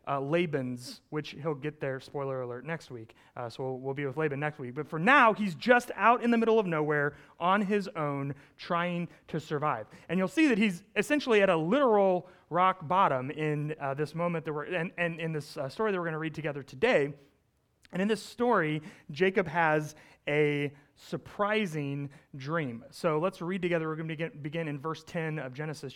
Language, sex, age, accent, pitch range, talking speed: English, male, 30-49, American, 140-185 Hz, 205 wpm